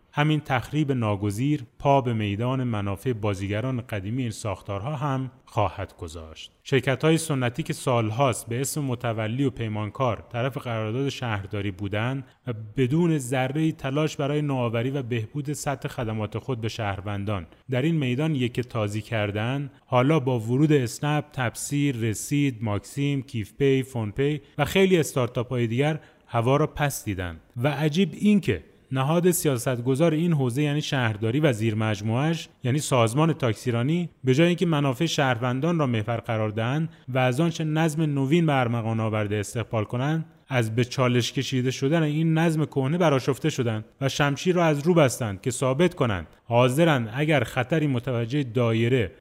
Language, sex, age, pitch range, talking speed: Persian, male, 30-49, 115-150 Hz, 150 wpm